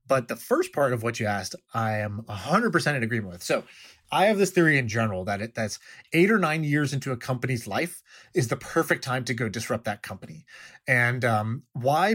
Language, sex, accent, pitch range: English, male, American, 120-155 Hz